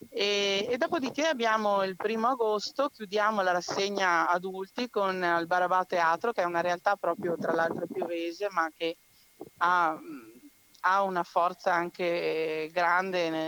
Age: 30-49